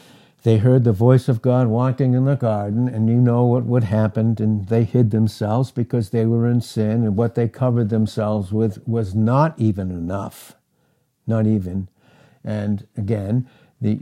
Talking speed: 170 wpm